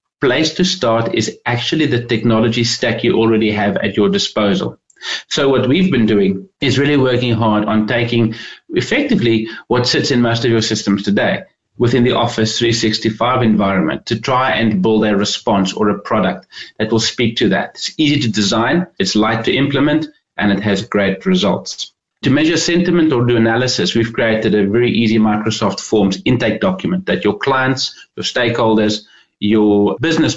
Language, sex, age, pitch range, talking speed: English, male, 30-49, 105-130 Hz, 175 wpm